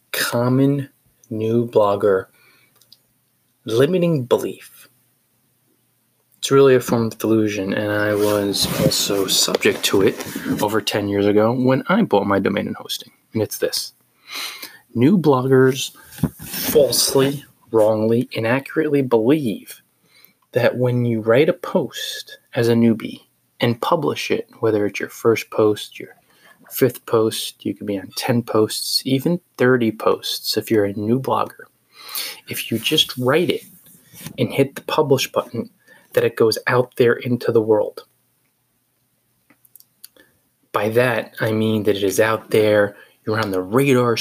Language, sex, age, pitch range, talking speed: English, male, 20-39, 110-135 Hz, 140 wpm